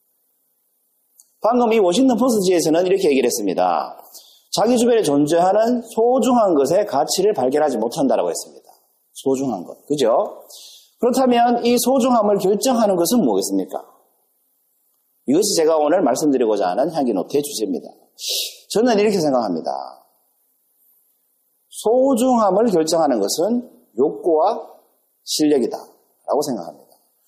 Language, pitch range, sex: Korean, 200-275 Hz, male